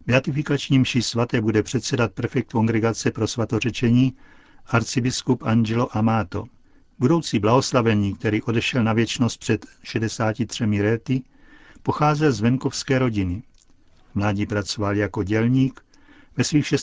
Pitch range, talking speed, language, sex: 110-130 Hz, 110 wpm, Czech, male